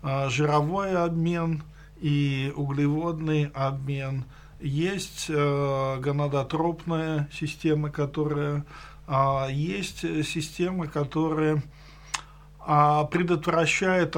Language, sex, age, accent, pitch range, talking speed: Russian, male, 50-69, native, 145-170 Hz, 55 wpm